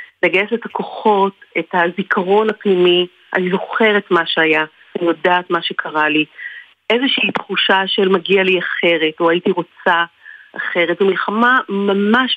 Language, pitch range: Hebrew, 170-200 Hz